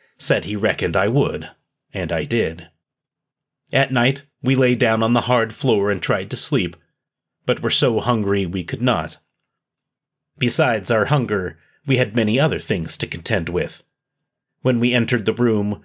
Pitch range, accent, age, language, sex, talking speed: 105-130 Hz, American, 30-49, English, male, 165 wpm